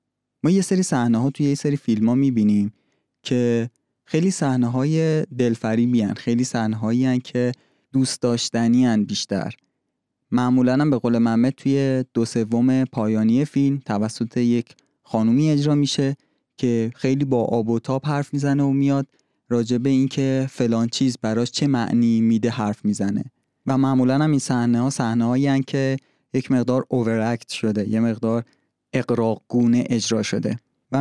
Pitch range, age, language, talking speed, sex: 115-135 Hz, 20-39, Persian, 155 wpm, male